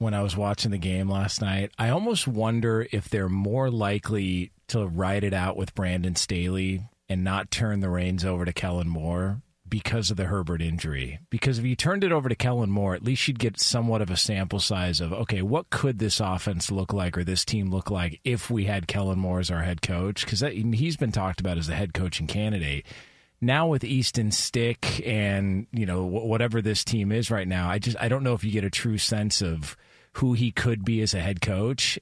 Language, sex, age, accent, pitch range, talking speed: English, male, 40-59, American, 95-120 Hz, 225 wpm